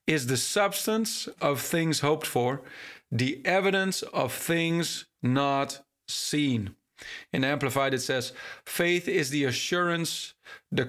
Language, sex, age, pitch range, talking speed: English, male, 40-59, 130-165 Hz, 120 wpm